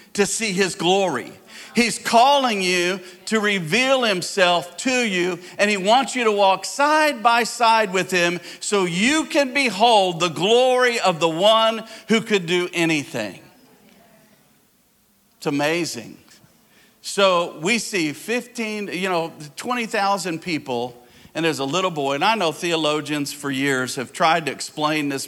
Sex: male